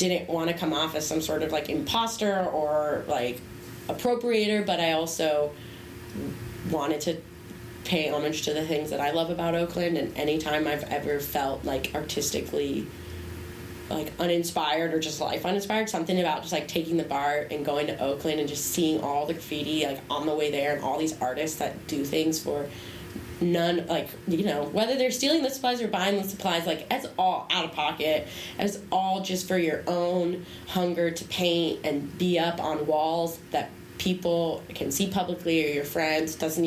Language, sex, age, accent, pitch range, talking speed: English, female, 20-39, American, 150-175 Hz, 185 wpm